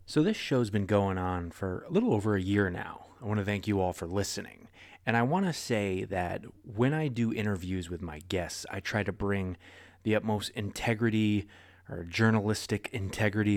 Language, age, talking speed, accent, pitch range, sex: English, 30-49, 195 wpm, American, 95-115 Hz, male